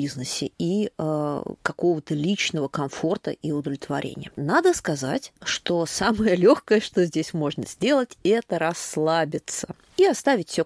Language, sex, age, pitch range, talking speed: Russian, female, 20-39, 155-220 Hz, 120 wpm